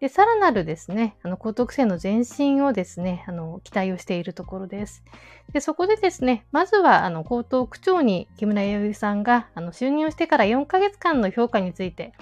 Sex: female